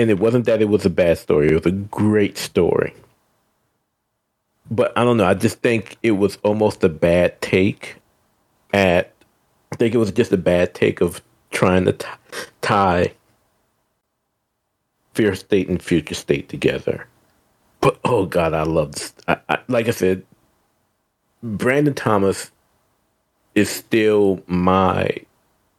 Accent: American